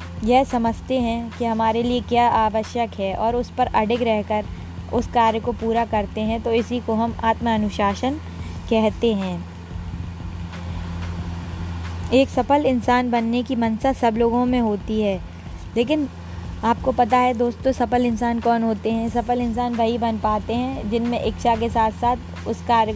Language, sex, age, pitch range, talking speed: Hindi, female, 20-39, 200-245 Hz, 160 wpm